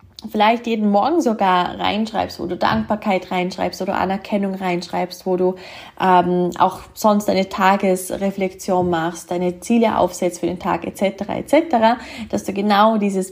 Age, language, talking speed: 20-39, German, 150 wpm